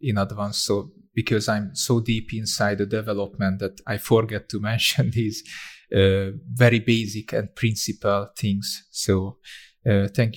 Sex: male